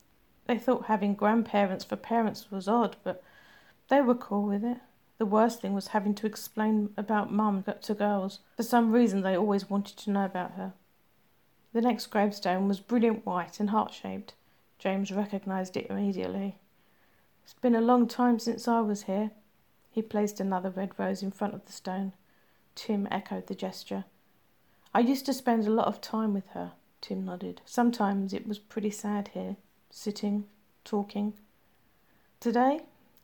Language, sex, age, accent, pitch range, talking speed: English, female, 50-69, British, 195-230 Hz, 165 wpm